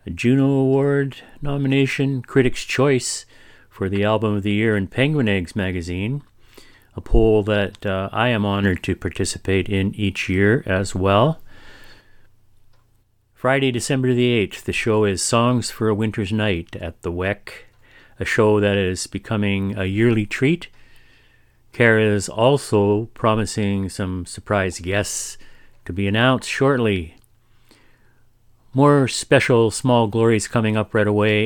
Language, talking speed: English, 135 wpm